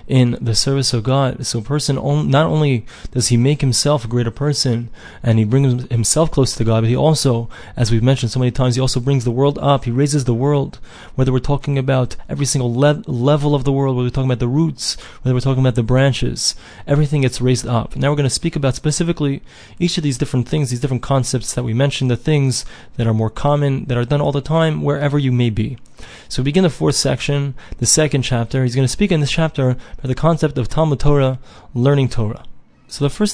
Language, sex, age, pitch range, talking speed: English, male, 20-39, 125-155 Hz, 235 wpm